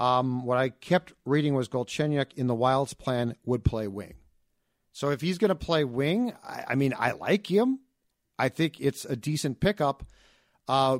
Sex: male